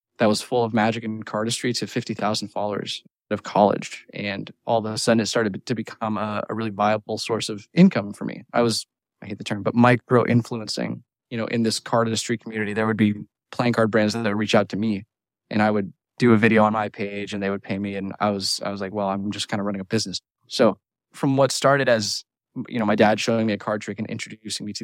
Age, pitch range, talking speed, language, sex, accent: 20-39, 105-120 Hz, 245 wpm, English, male, American